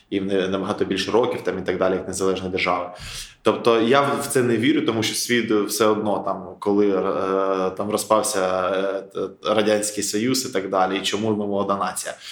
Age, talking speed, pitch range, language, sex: 20-39, 170 wpm, 95-115 Hz, Ukrainian, male